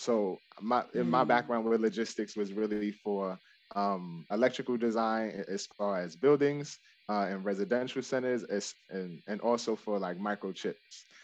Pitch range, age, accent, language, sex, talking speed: 100-125 Hz, 20-39, American, English, male, 150 wpm